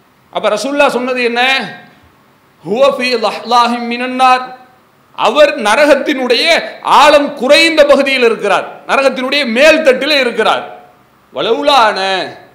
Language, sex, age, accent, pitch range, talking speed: English, male, 40-59, Indian, 245-295 Hz, 95 wpm